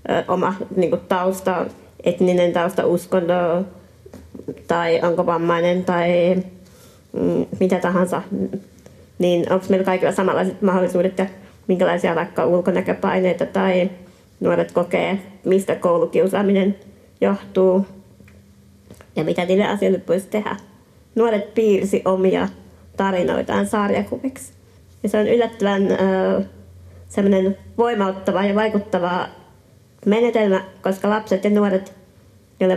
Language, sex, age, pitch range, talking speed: Finnish, female, 20-39, 175-200 Hz, 100 wpm